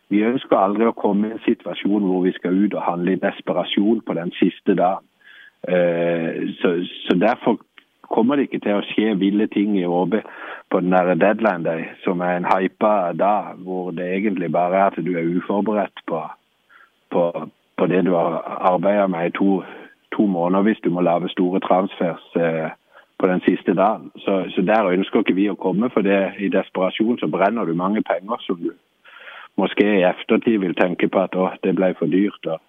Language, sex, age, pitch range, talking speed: Danish, male, 50-69, 90-100 Hz, 190 wpm